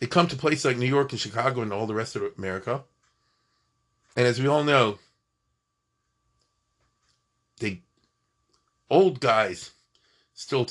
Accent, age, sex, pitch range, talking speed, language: American, 40-59, male, 120-165 Hz, 135 wpm, English